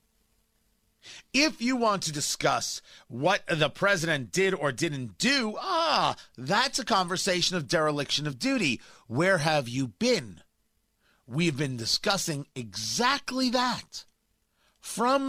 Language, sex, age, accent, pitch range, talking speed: English, male, 40-59, American, 145-200 Hz, 120 wpm